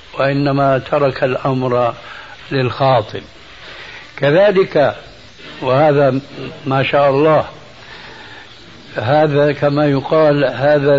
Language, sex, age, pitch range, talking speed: Arabic, male, 60-79, 130-150 Hz, 70 wpm